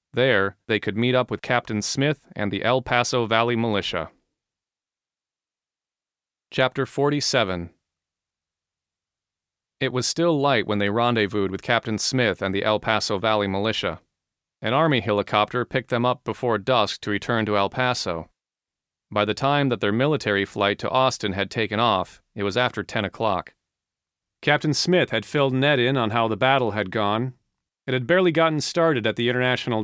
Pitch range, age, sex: 100-130 Hz, 40-59, male